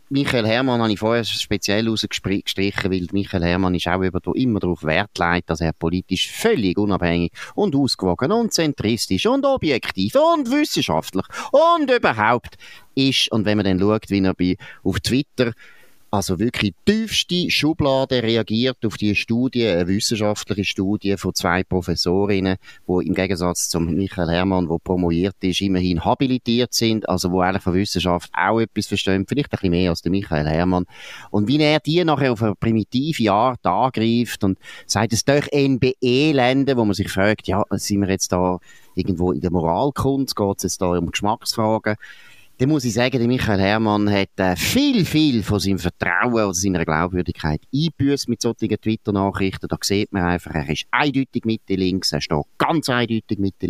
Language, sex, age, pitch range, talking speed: German, male, 30-49, 90-120 Hz, 170 wpm